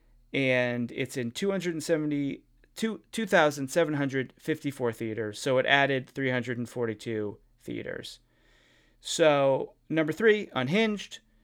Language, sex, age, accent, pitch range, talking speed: English, male, 30-49, American, 125-180 Hz, 80 wpm